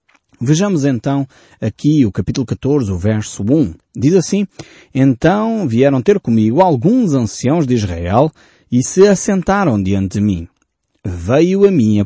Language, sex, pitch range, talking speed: Portuguese, male, 110-155 Hz, 145 wpm